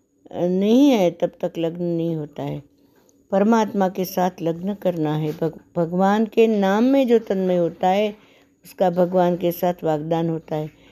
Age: 60-79